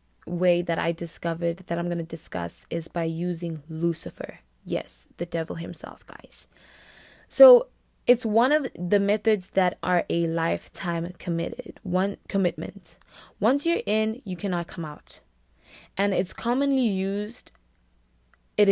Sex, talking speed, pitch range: female, 140 wpm, 165-200 Hz